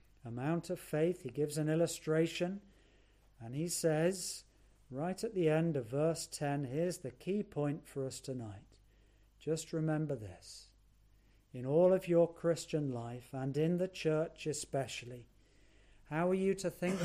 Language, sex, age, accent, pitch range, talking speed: English, male, 50-69, British, 120-170 Hz, 150 wpm